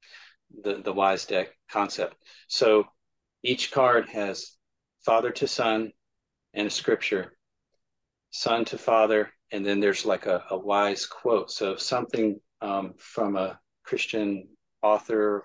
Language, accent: English, American